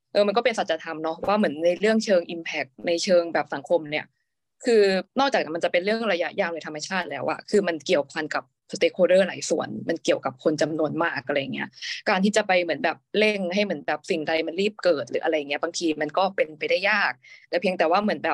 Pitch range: 165-210 Hz